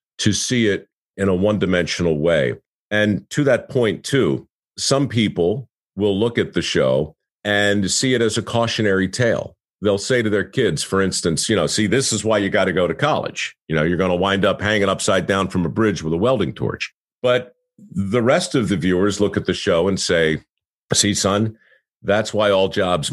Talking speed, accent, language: 210 wpm, American, English